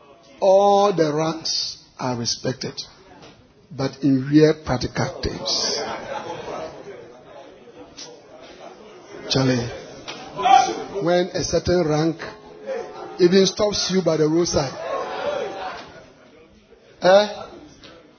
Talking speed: 75 wpm